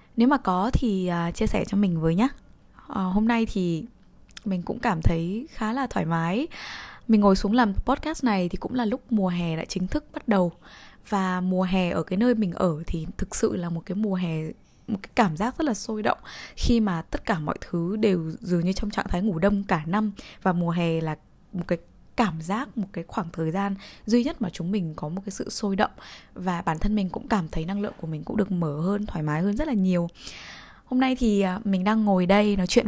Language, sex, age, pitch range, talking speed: Vietnamese, female, 10-29, 175-220 Hz, 245 wpm